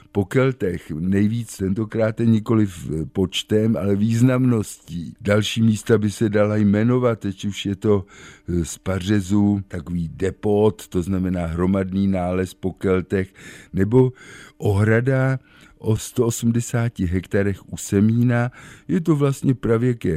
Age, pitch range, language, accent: 50-69, 100-115 Hz, Czech, native